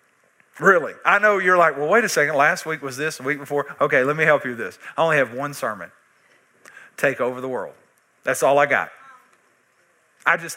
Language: English